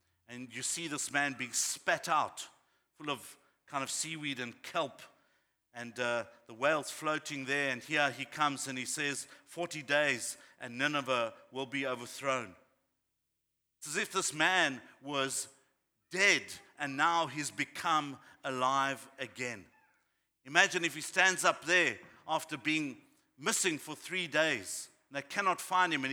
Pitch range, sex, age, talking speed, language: 130-160 Hz, male, 50-69, 150 wpm, English